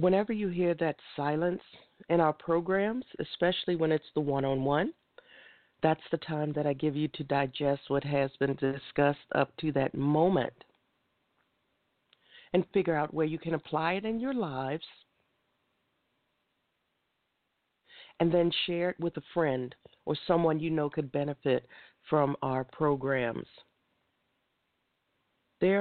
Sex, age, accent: female, 50-69, American